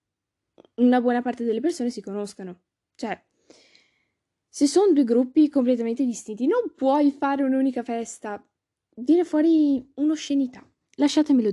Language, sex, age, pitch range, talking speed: Italian, female, 10-29, 200-250 Hz, 120 wpm